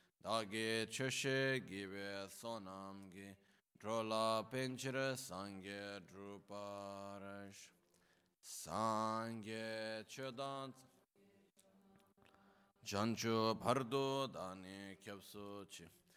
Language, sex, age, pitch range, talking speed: Italian, male, 20-39, 95-120 Hz, 60 wpm